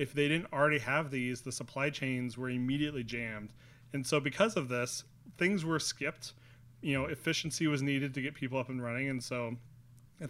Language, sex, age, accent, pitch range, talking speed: English, male, 30-49, American, 125-150 Hz, 200 wpm